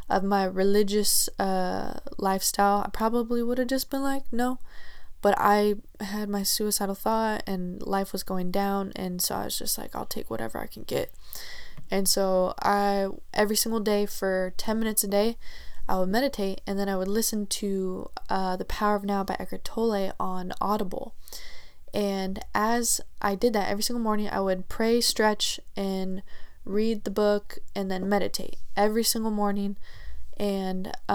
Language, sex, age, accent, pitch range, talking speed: English, female, 10-29, American, 195-230 Hz, 170 wpm